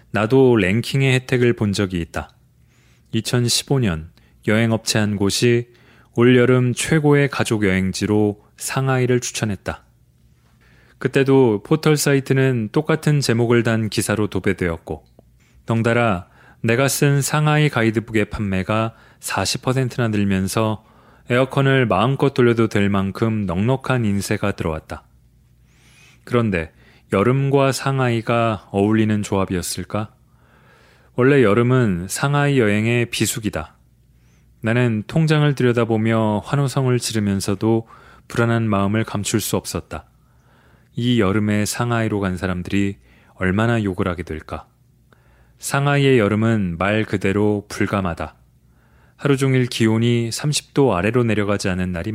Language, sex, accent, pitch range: Korean, male, native, 100-125 Hz